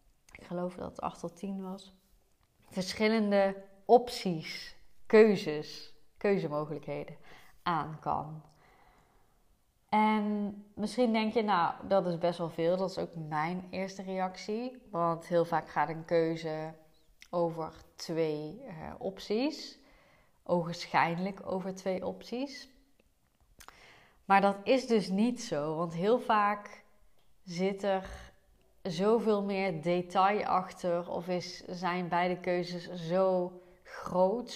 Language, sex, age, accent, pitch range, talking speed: Dutch, female, 30-49, Dutch, 165-195 Hz, 115 wpm